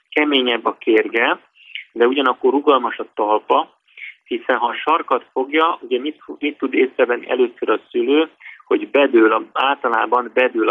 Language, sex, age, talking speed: Hungarian, male, 30-49, 150 wpm